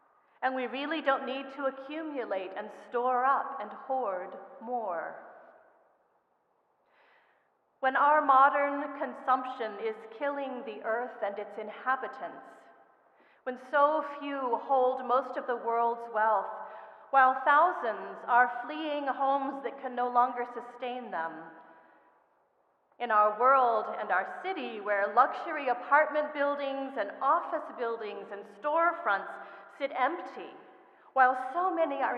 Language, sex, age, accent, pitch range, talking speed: English, female, 40-59, American, 220-275 Hz, 120 wpm